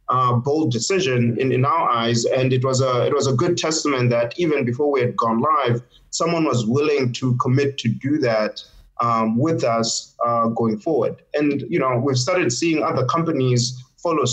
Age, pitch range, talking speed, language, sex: 30-49, 120-155 Hz, 185 wpm, English, male